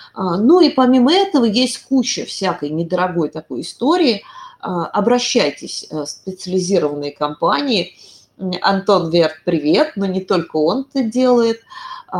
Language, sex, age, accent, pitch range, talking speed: Russian, female, 30-49, native, 170-260 Hz, 115 wpm